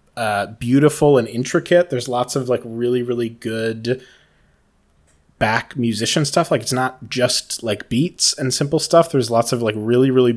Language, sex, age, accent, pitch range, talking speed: English, male, 20-39, American, 110-135 Hz, 170 wpm